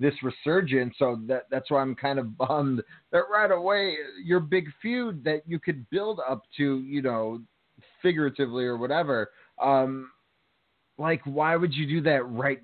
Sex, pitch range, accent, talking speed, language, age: male, 125-160 Hz, American, 165 wpm, English, 30-49